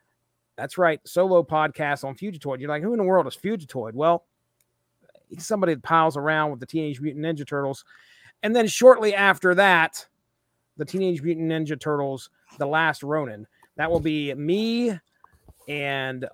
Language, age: English, 40-59